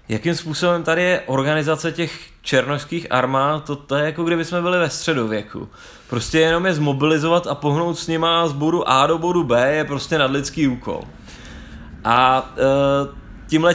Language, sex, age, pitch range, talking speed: Czech, male, 20-39, 130-165 Hz, 160 wpm